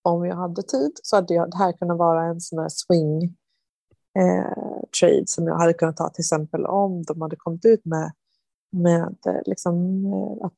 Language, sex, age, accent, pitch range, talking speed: Swedish, female, 30-49, native, 160-185 Hz, 170 wpm